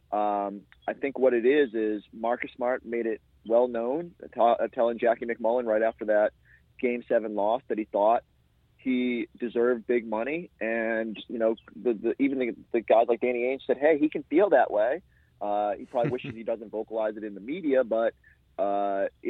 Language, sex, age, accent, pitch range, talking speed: English, male, 30-49, American, 110-130 Hz, 195 wpm